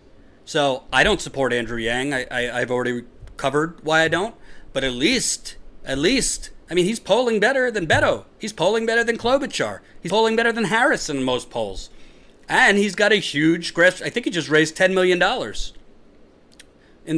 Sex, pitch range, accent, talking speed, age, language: male, 130-190 Hz, American, 190 wpm, 40-59, English